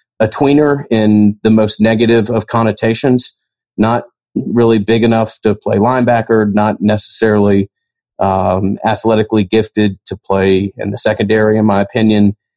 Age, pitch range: 40-59, 105-120 Hz